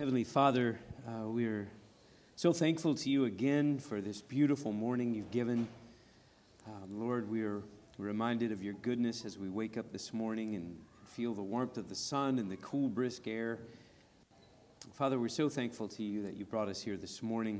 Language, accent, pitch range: English, American, 100-120 Hz